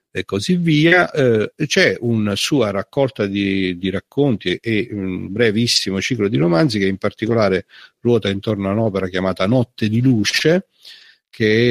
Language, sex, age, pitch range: Italian, male, 50-69, 95-130 Hz